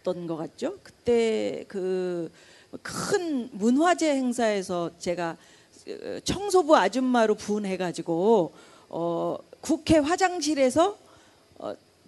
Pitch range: 190-295 Hz